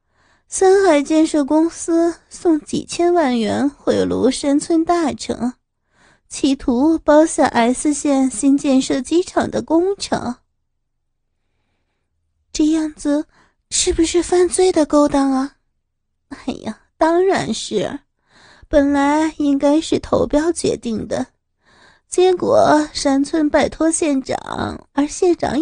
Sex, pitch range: female, 245-320 Hz